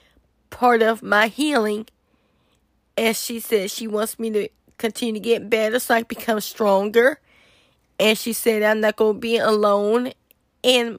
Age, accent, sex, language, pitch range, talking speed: 20-39, American, female, English, 220-245 Hz, 160 wpm